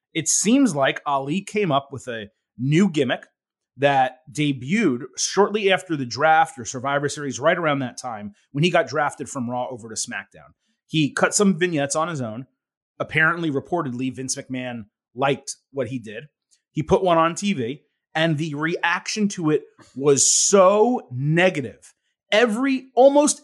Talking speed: 160 wpm